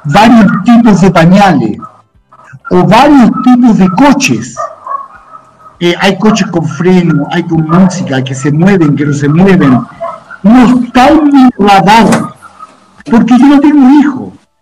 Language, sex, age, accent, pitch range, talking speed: English, male, 50-69, Mexican, 195-275 Hz, 125 wpm